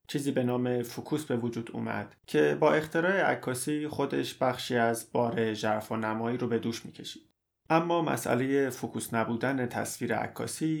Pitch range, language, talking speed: 115-130 Hz, Persian, 160 wpm